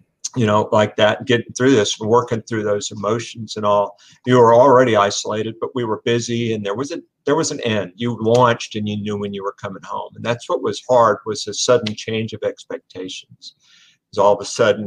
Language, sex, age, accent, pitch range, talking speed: English, male, 50-69, American, 100-125 Hz, 220 wpm